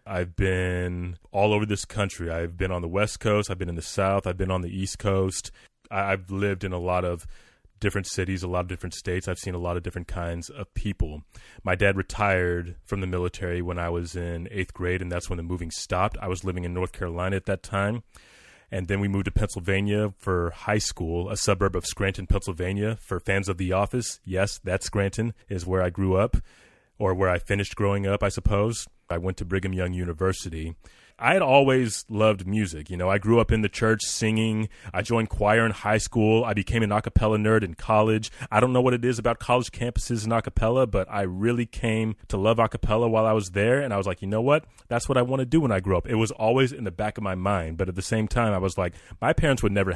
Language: English